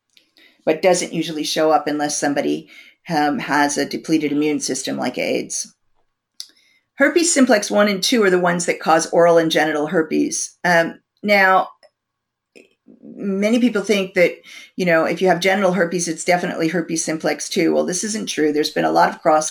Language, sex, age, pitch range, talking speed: English, female, 40-59, 160-210 Hz, 175 wpm